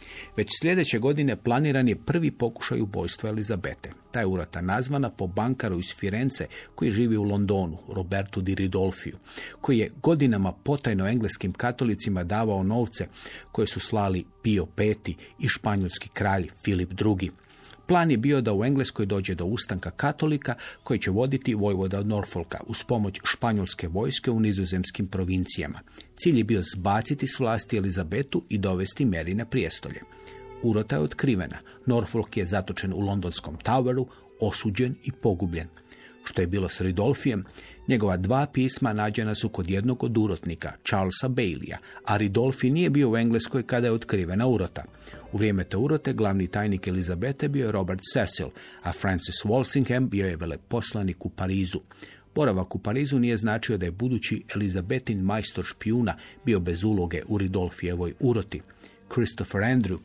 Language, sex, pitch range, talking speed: Croatian, male, 95-120 Hz, 150 wpm